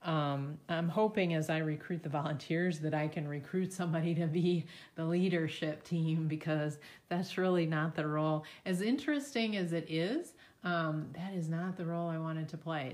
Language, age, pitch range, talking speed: English, 30-49, 150-170 Hz, 180 wpm